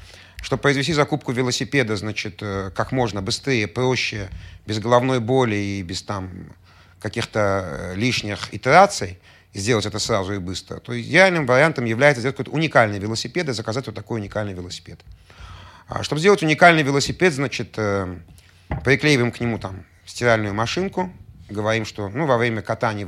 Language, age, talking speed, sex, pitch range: Russian, 30-49, 140 wpm, male, 100-135 Hz